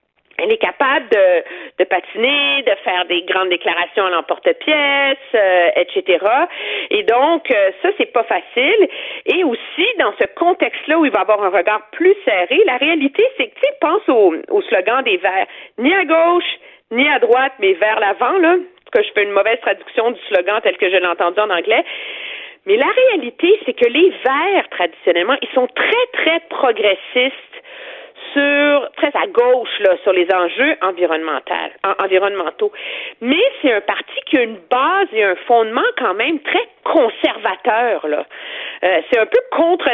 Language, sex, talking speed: French, female, 170 wpm